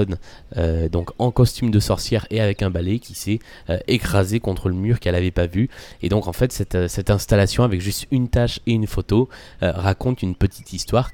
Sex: male